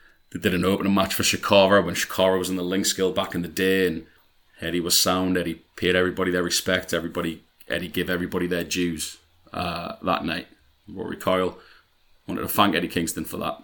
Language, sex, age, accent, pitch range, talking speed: English, male, 30-49, British, 85-100 Hz, 200 wpm